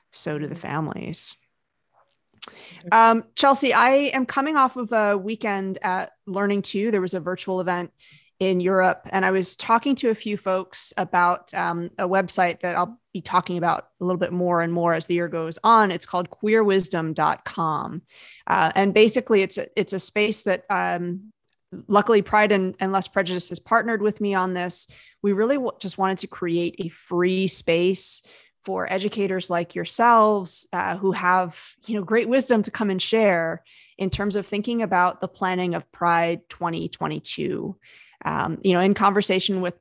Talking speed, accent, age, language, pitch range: 170 wpm, American, 30-49, English, 175-210 Hz